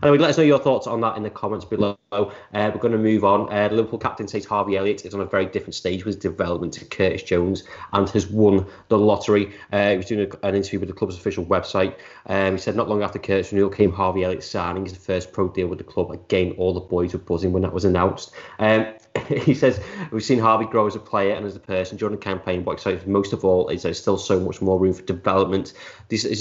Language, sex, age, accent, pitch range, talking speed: English, male, 20-39, British, 95-110 Hz, 260 wpm